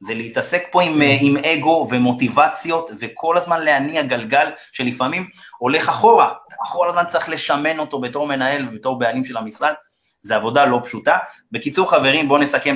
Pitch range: 120-160 Hz